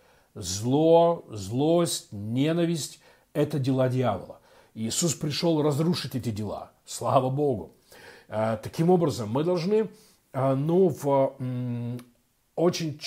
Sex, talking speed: male, 85 wpm